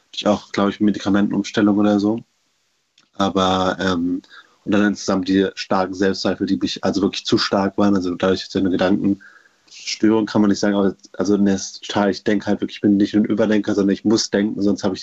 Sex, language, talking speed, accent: male, German, 210 wpm, German